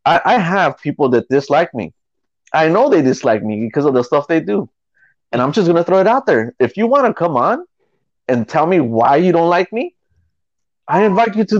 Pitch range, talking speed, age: 130-180 Hz, 235 wpm, 30-49